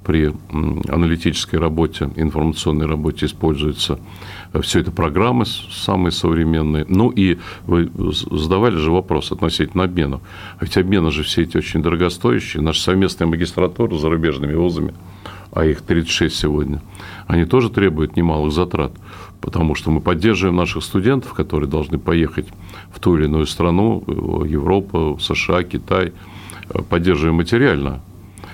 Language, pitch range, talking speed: Russian, 80-95 Hz, 130 wpm